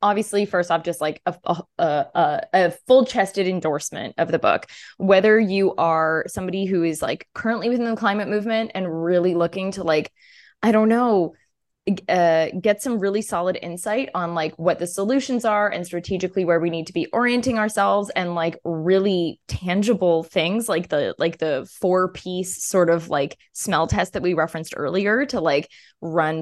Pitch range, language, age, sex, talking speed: 170-225 Hz, English, 20-39, female, 175 wpm